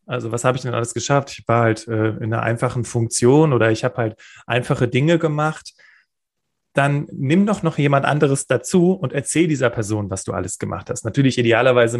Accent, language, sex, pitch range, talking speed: German, German, male, 120-150 Hz, 200 wpm